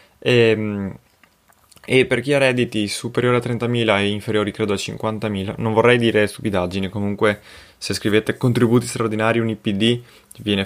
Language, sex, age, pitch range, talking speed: Italian, male, 20-39, 100-120 Hz, 145 wpm